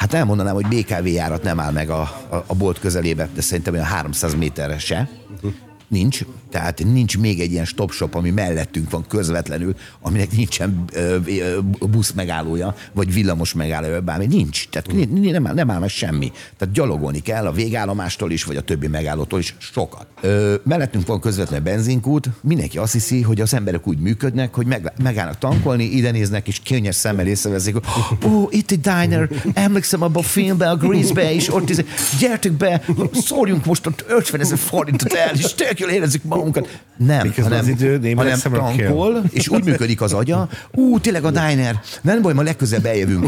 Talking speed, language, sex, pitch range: 170 wpm, Hungarian, male, 90-135 Hz